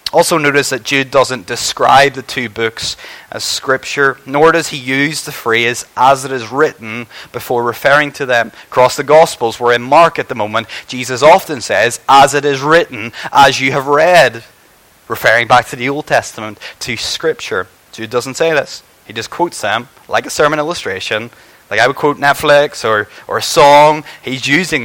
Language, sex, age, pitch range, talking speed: English, male, 20-39, 120-150 Hz, 185 wpm